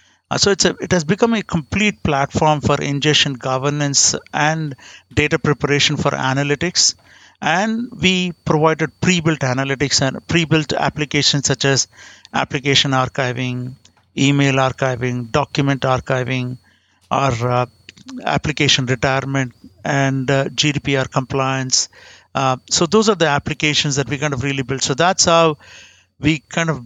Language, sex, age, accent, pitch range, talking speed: English, male, 60-79, Indian, 135-160 Hz, 130 wpm